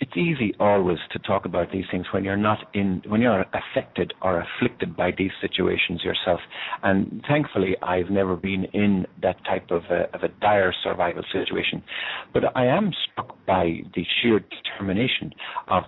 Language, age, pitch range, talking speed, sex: English, 50-69, 90-115 Hz, 165 wpm, male